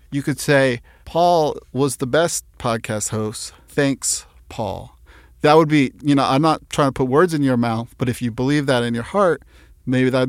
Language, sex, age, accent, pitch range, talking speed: English, male, 40-59, American, 125-155 Hz, 205 wpm